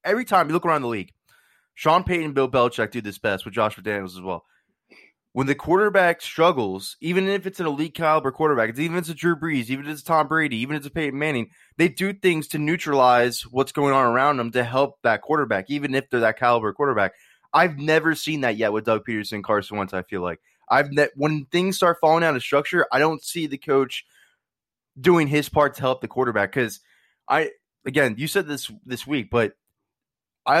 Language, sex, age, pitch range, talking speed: English, male, 20-39, 115-155 Hz, 220 wpm